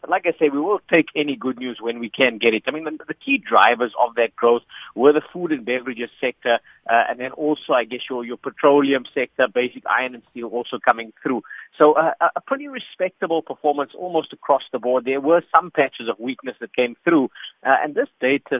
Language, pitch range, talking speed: English, 125-160 Hz, 225 wpm